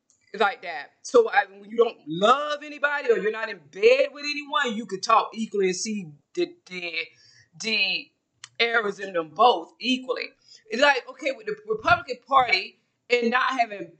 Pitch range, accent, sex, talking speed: 200-295 Hz, American, female, 165 wpm